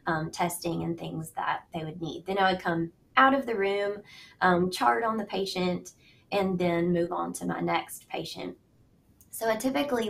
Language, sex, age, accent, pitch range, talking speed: English, female, 20-39, American, 180-225 Hz, 190 wpm